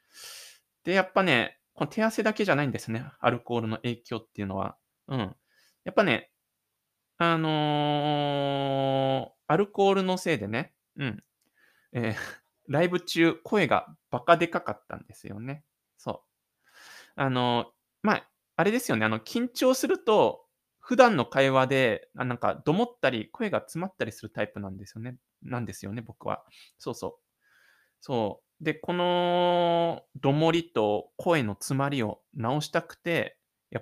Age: 20-39